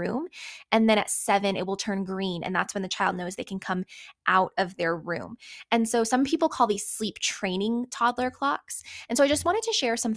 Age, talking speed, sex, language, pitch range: 20-39, 235 wpm, female, English, 195-260 Hz